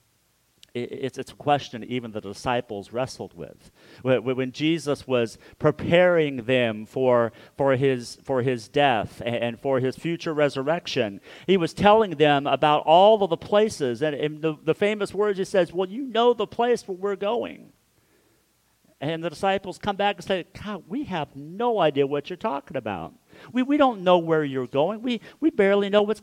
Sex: male